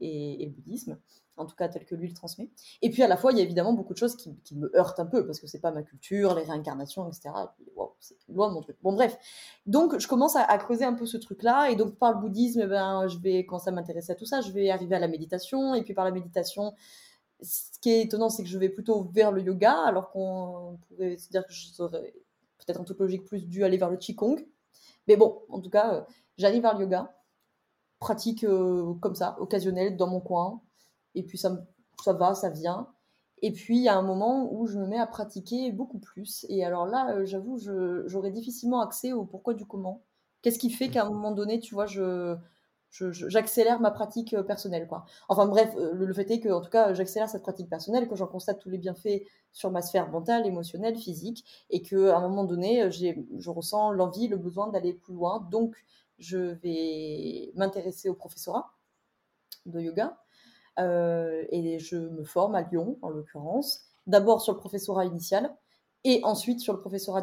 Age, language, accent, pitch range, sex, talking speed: 20-39, French, French, 180-220 Hz, female, 225 wpm